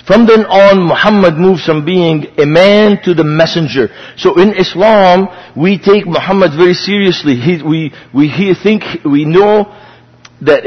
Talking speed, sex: 155 wpm, male